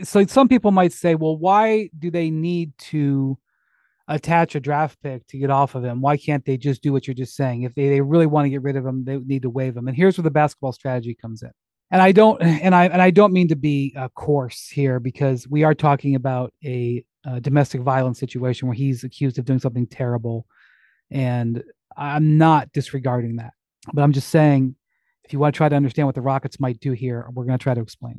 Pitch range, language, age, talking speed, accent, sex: 130-160 Hz, English, 30-49, 235 wpm, American, male